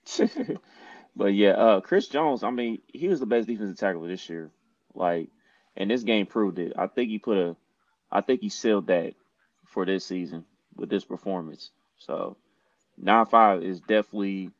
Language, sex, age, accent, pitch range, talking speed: English, male, 20-39, American, 95-120 Hz, 175 wpm